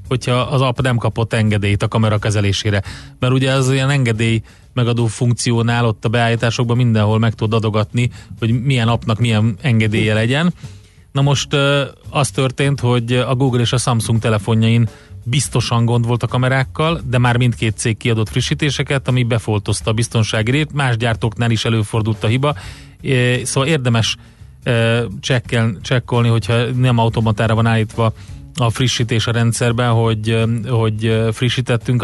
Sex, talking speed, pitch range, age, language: male, 140 wpm, 110-125 Hz, 30-49, Hungarian